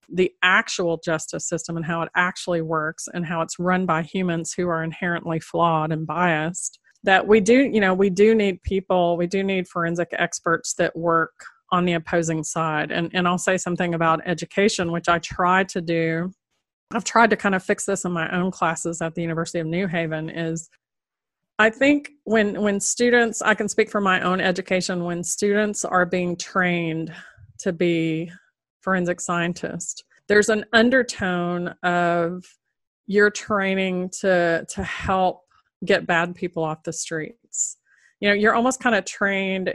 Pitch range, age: 170-195 Hz, 30-49